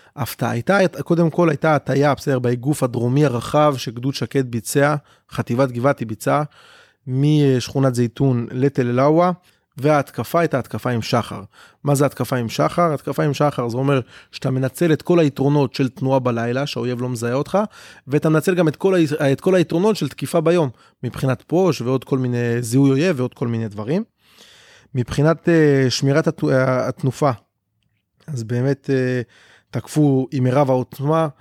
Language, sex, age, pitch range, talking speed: Hebrew, male, 20-39, 125-150 Hz, 140 wpm